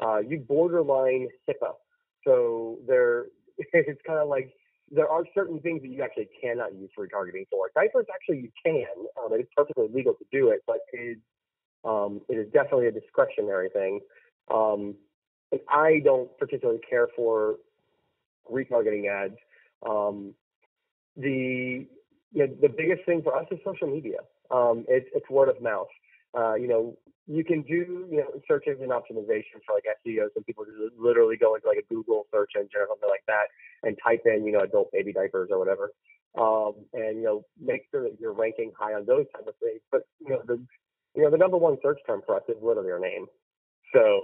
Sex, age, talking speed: male, 30-49, 190 wpm